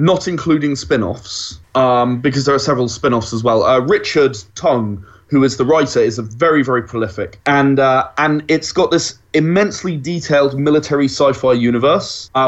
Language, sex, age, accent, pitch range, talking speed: English, male, 20-39, British, 115-145 Hz, 170 wpm